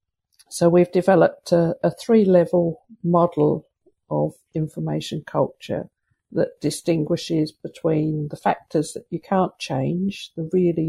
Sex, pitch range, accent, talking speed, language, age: female, 160-185 Hz, British, 115 wpm, English, 60-79